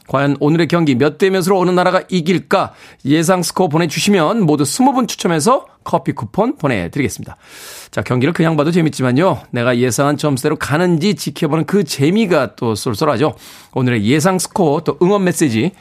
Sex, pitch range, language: male, 135-195 Hz, Korean